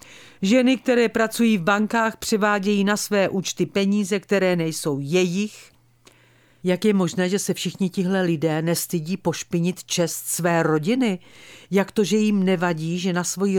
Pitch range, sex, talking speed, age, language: 155-210 Hz, female, 150 wpm, 50-69, Czech